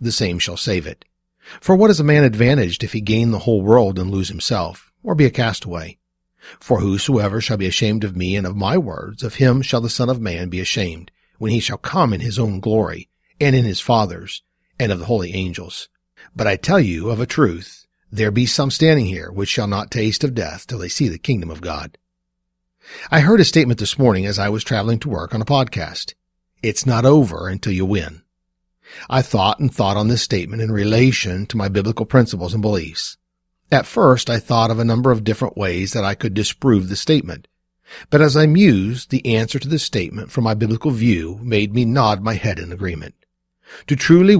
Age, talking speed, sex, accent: 50-69, 215 wpm, male, American